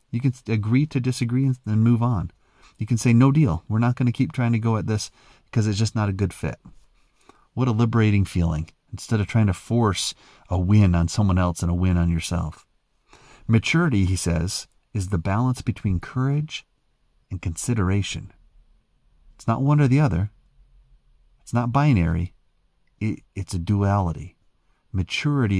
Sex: male